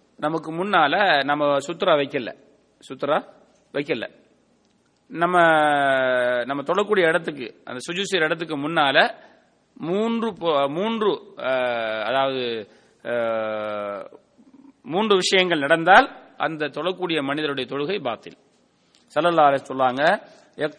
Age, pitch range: 30-49, 130-175 Hz